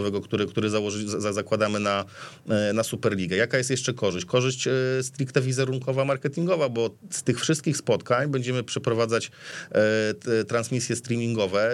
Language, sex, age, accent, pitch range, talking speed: Polish, male, 40-59, native, 110-135 Hz, 125 wpm